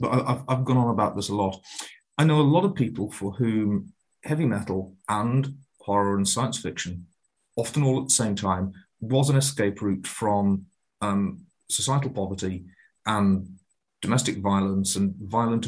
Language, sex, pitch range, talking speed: English, male, 100-130 Hz, 160 wpm